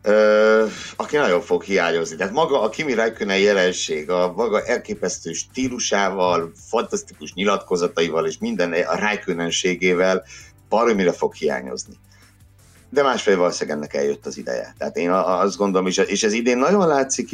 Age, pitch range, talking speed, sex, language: 60-79, 85-115 Hz, 135 wpm, male, Hungarian